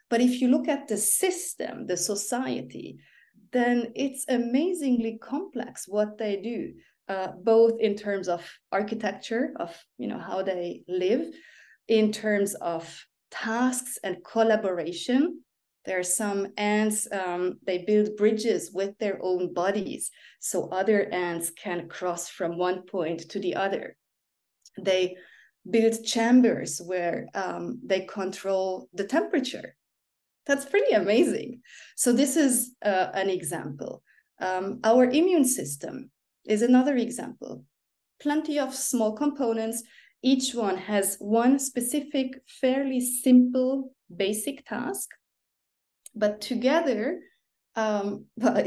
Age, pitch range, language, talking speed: 30-49, 190-260 Hz, English, 120 wpm